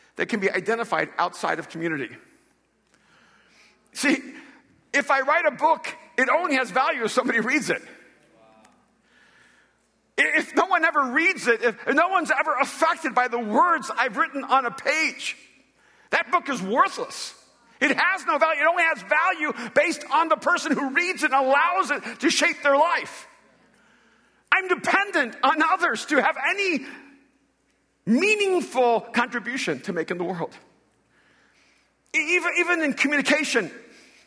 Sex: male